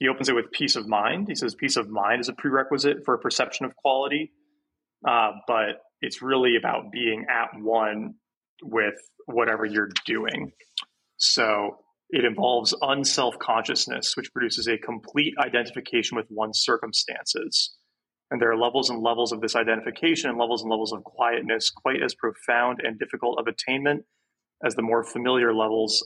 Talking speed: 165 wpm